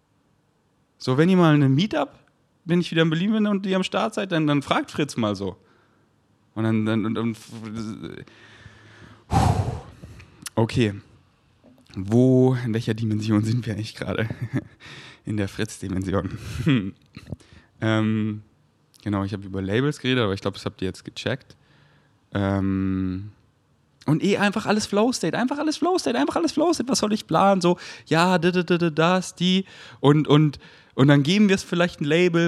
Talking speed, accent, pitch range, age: 175 wpm, German, 115-160 Hz, 30-49